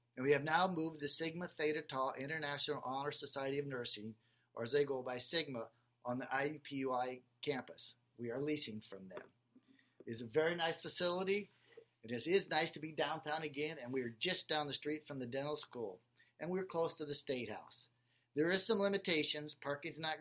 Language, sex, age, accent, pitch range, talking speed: English, male, 40-59, American, 120-155 Hz, 210 wpm